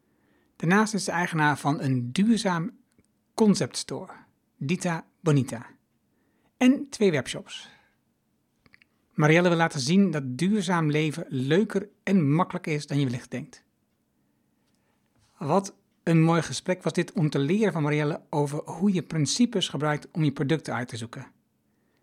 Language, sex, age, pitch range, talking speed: Dutch, male, 60-79, 145-190 Hz, 135 wpm